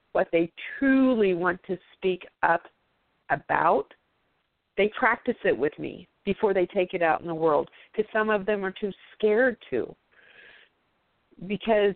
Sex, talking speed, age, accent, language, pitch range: female, 150 wpm, 40-59, American, English, 180-220 Hz